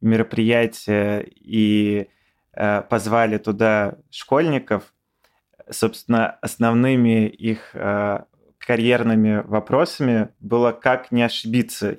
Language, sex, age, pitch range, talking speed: Russian, male, 20-39, 110-120 Hz, 80 wpm